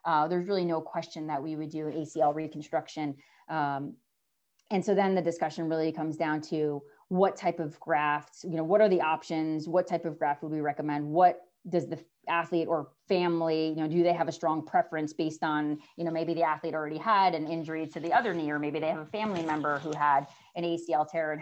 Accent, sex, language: American, female, English